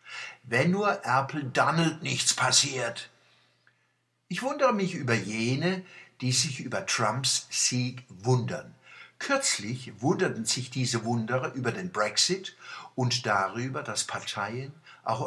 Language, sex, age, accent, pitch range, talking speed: German, male, 60-79, German, 115-160 Hz, 120 wpm